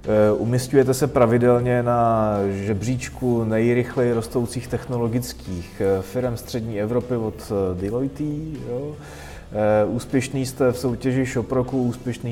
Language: Czech